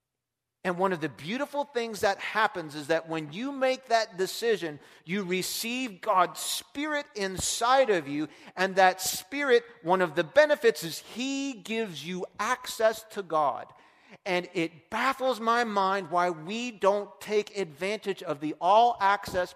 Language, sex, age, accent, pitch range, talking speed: English, male, 40-59, American, 180-250 Hz, 155 wpm